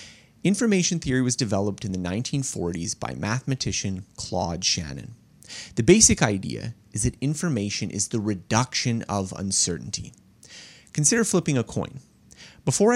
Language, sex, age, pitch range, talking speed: English, male, 30-49, 100-135 Hz, 125 wpm